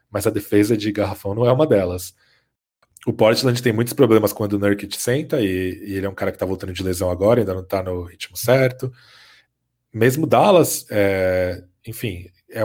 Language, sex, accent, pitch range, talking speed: Portuguese, male, Brazilian, 100-125 Hz, 200 wpm